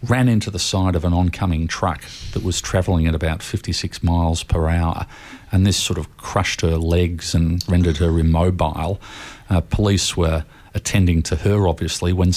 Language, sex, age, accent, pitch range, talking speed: English, male, 40-59, Australian, 85-100 Hz, 175 wpm